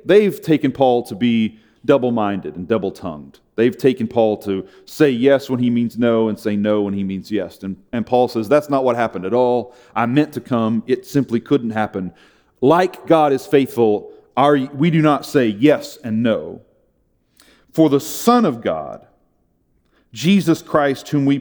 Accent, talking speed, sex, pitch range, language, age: American, 175 wpm, male, 125-175 Hz, English, 40-59